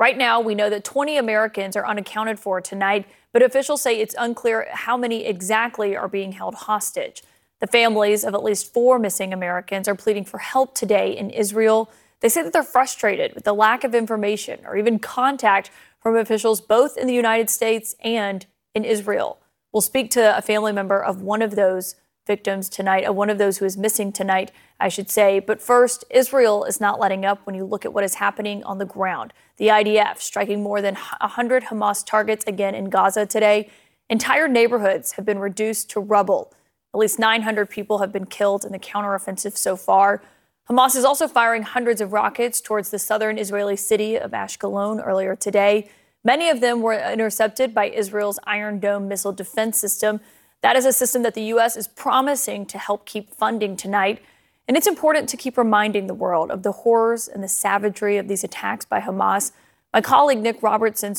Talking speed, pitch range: 190 wpm, 200-230 Hz